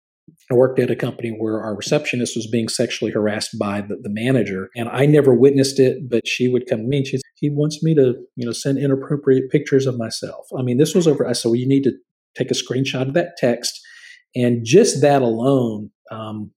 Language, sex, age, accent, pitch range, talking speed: English, male, 40-59, American, 115-135 Hz, 225 wpm